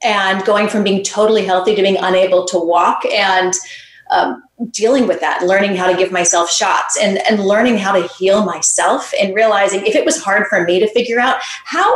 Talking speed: 205 wpm